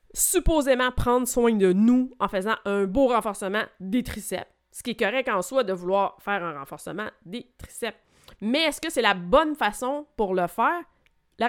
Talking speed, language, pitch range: 190 wpm, French, 200-270 Hz